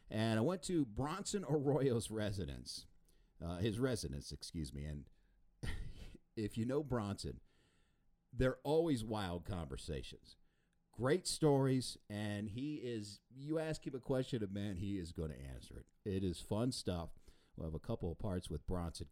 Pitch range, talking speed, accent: 85-120 Hz, 160 wpm, American